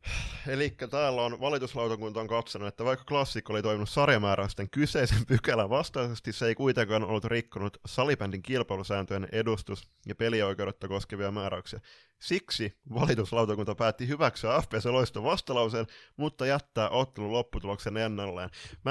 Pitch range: 105-130 Hz